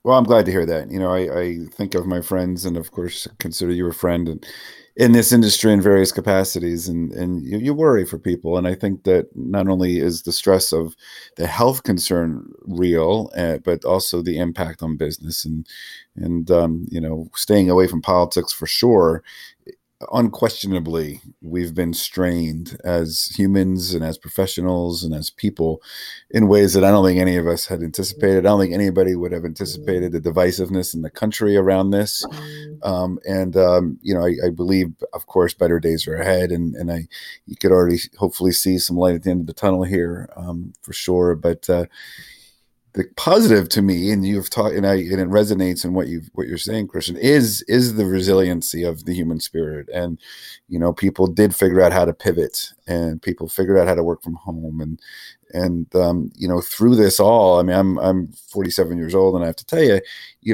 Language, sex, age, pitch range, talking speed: English, male, 40-59, 85-95 Hz, 205 wpm